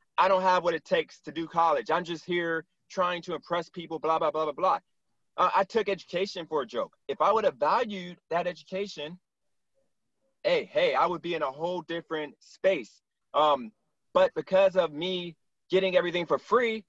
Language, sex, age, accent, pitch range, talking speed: English, male, 30-49, American, 170-205 Hz, 190 wpm